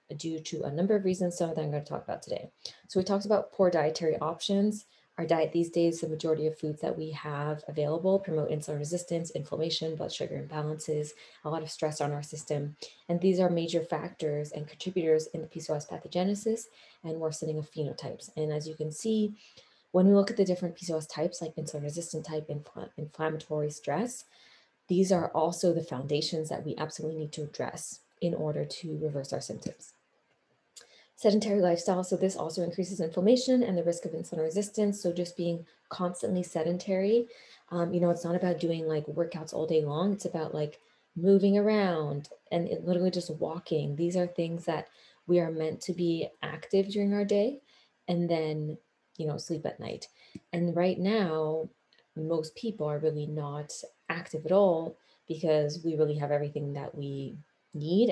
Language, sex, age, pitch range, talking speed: English, female, 20-39, 155-180 Hz, 185 wpm